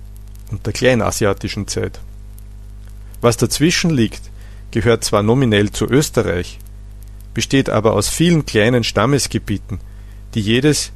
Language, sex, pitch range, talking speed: German, male, 100-125 Hz, 105 wpm